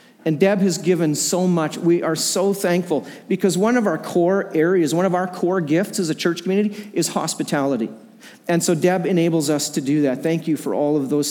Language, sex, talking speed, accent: English, male, 220 wpm, American